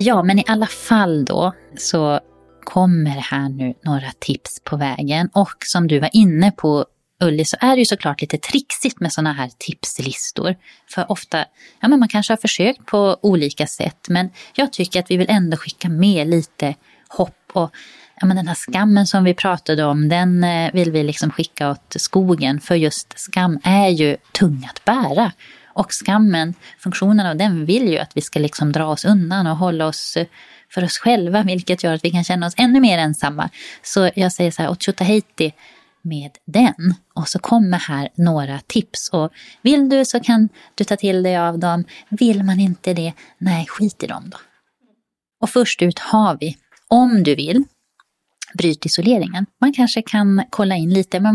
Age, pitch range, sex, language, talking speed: 30-49, 160-205 Hz, female, Swedish, 185 wpm